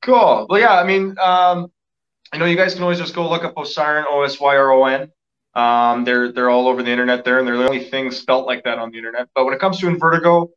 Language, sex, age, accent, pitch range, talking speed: English, male, 20-39, American, 115-135 Hz, 255 wpm